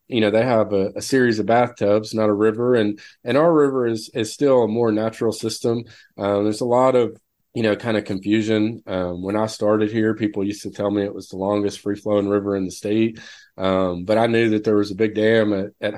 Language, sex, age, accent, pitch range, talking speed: English, male, 30-49, American, 100-115 Hz, 240 wpm